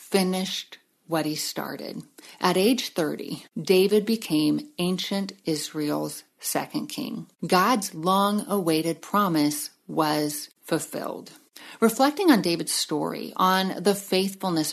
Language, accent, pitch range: English, American, 165-225 Hz